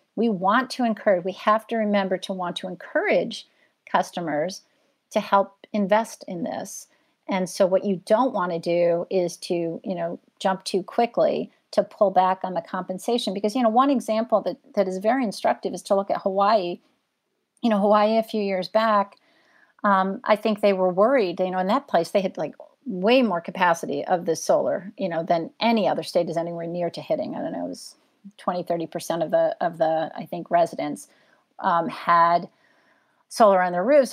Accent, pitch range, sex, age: American, 180-225 Hz, female, 40-59